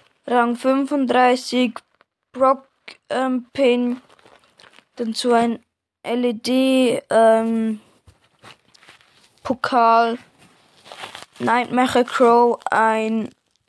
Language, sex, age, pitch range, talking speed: German, female, 20-39, 230-265 Hz, 50 wpm